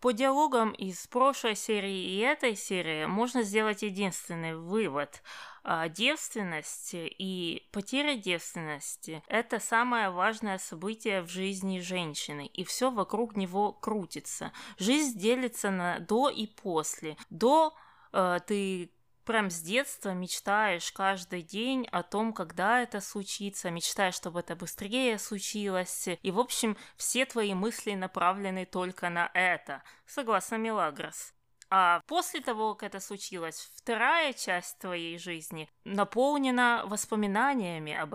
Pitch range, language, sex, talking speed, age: 180-230 Hz, Russian, female, 125 wpm, 20-39